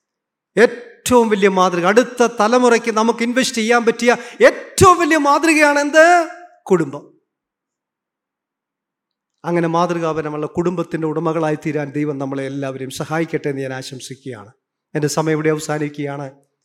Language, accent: Malayalam, native